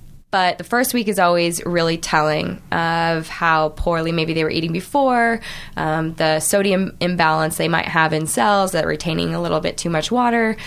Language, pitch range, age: English, 165-200 Hz, 20-39